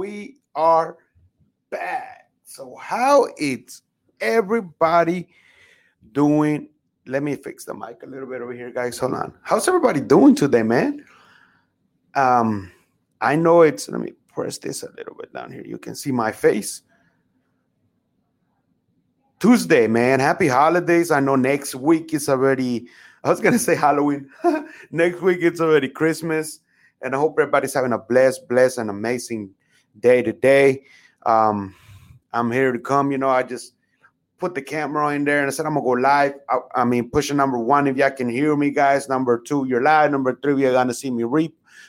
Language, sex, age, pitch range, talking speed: English, male, 30-49, 125-160 Hz, 180 wpm